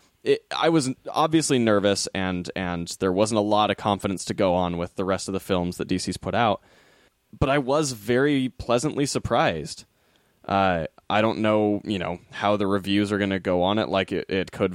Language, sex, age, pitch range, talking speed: English, male, 10-29, 95-115 Hz, 205 wpm